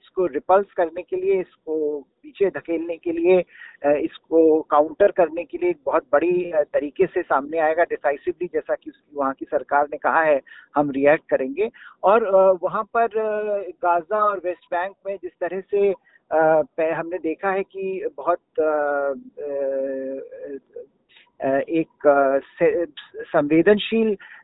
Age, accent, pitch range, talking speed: 50-69, native, 165-225 Hz, 100 wpm